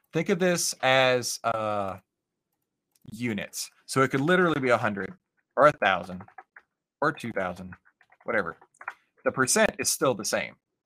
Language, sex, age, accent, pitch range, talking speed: English, male, 30-49, American, 125-180 Hz, 125 wpm